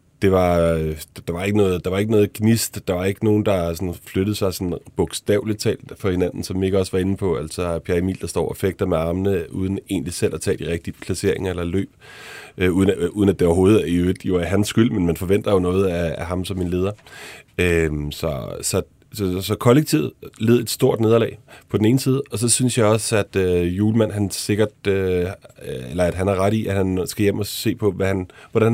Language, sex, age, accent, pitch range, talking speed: Danish, male, 30-49, native, 90-105 Hz, 235 wpm